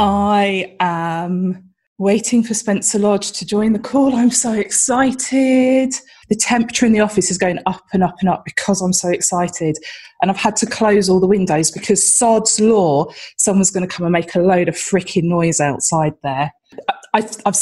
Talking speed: 185 wpm